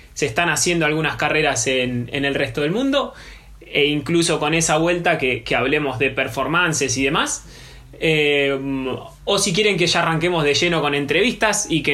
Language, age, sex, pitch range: Spanish, 20-39, male, 130-160 Hz